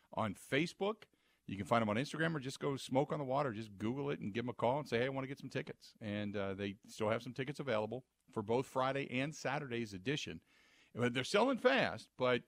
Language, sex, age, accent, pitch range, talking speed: English, male, 50-69, American, 105-140 Hz, 240 wpm